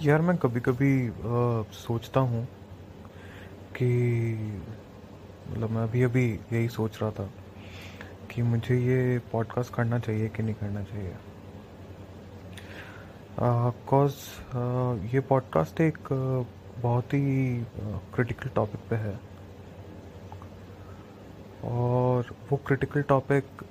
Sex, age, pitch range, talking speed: male, 30-49, 100-120 Hz, 100 wpm